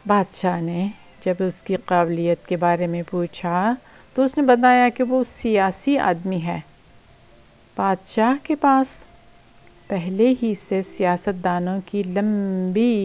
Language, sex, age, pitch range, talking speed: English, female, 50-69, 175-225 Hz, 130 wpm